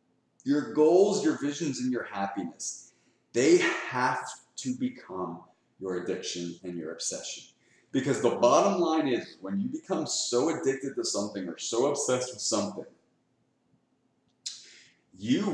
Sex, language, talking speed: male, English, 130 wpm